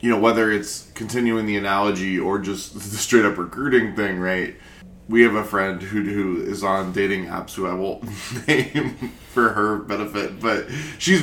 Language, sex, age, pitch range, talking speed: English, male, 20-39, 95-115 Hz, 175 wpm